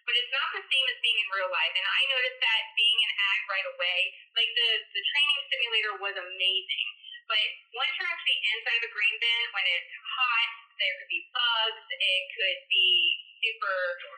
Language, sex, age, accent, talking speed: English, female, 30-49, American, 195 wpm